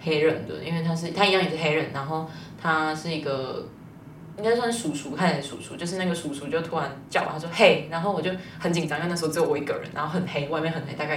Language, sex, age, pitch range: Chinese, female, 20-39, 145-165 Hz